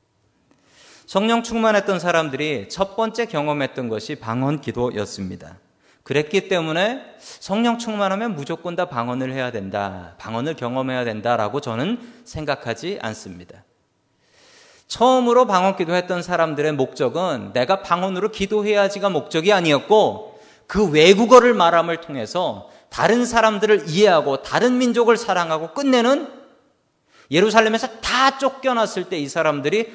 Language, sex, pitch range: Korean, male, 145-220 Hz